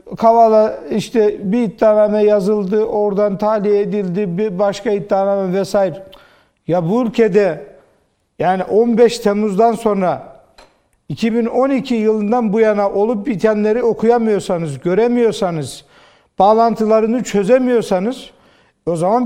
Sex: male